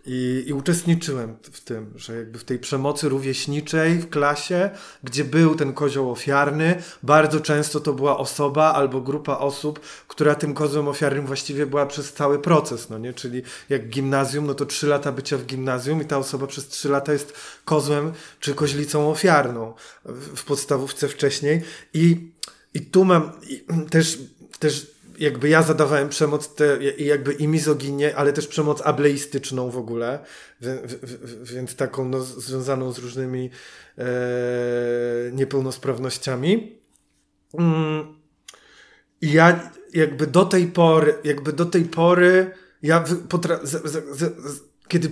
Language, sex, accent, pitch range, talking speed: Polish, male, native, 135-160 Hz, 135 wpm